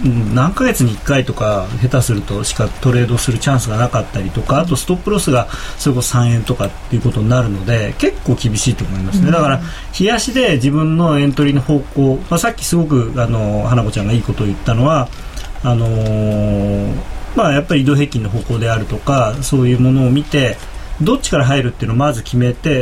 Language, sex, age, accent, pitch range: Japanese, male, 40-59, native, 115-165 Hz